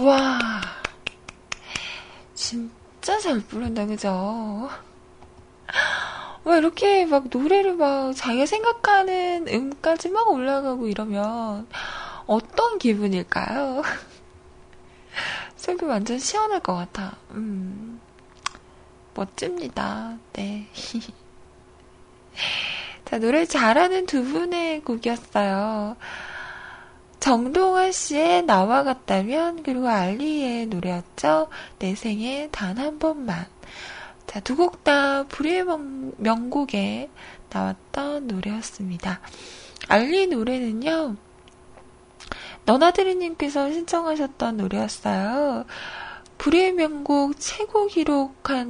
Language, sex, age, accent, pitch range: Korean, female, 20-39, native, 215-330 Hz